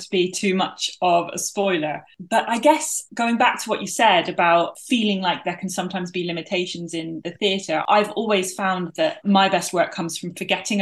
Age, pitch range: 20-39, 165-195 Hz